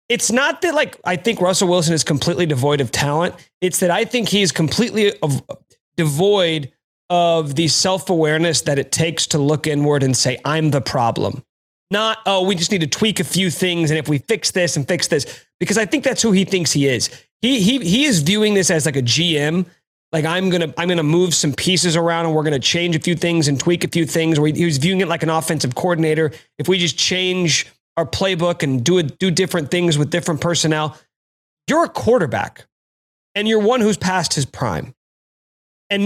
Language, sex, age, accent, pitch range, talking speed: English, male, 30-49, American, 150-190 Hz, 215 wpm